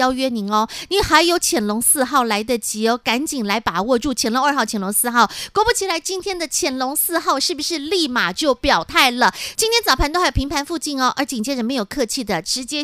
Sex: female